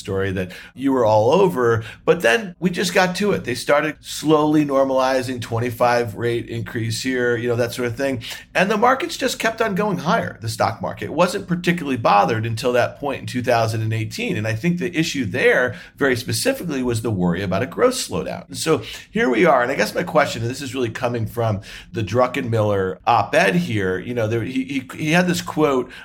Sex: male